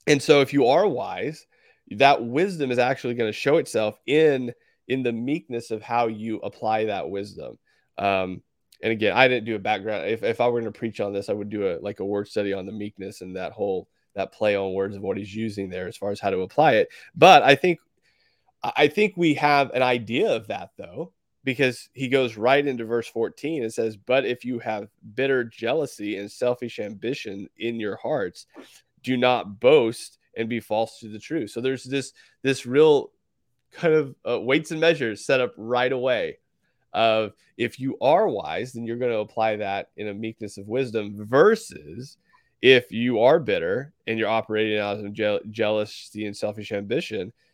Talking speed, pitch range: 200 wpm, 105-135 Hz